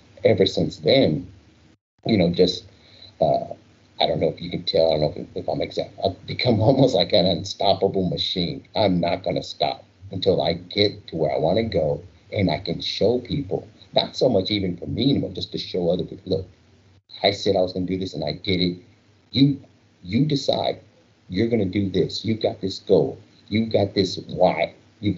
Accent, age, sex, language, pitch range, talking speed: American, 50-69, male, English, 90-105 Hz, 210 wpm